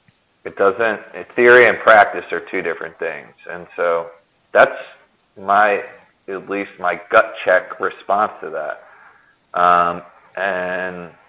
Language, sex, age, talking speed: English, male, 30-49, 120 wpm